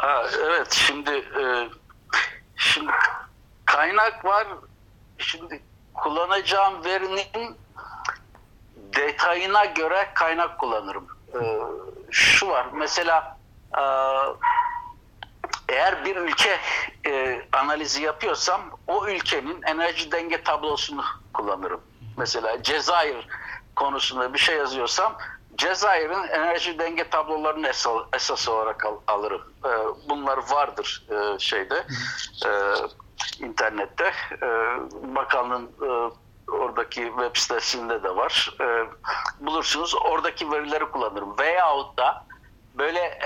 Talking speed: 95 wpm